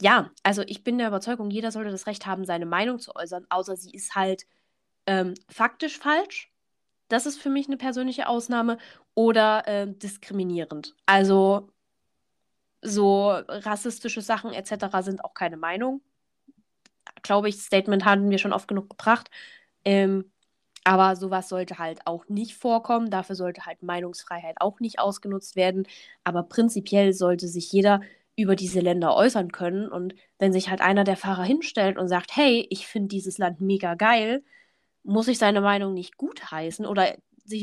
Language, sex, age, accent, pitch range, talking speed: German, female, 10-29, German, 190-230 Hz, 160 wpm